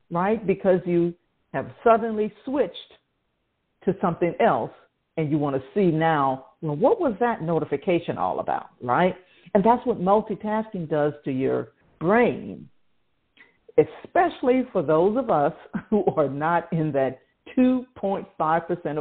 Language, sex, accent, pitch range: English, female, American, 150-220 Hz